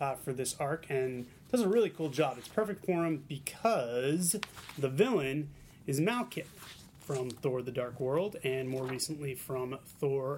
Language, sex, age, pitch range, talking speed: English, male, 30-49, 130-165 Hz, 170 wpm